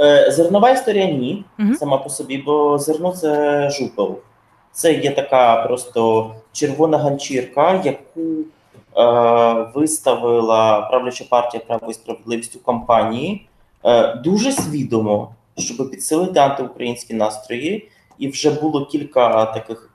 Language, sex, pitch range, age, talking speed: Ukrainian, male, 115-150 Hz, 20-39, 110 wpm